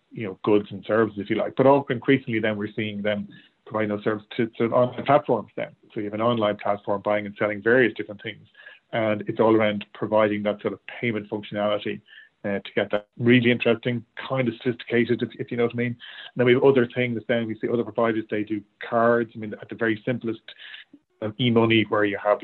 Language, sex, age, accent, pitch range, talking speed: English, male, 40-59, Irish, 105-120 Hz, 230 wpm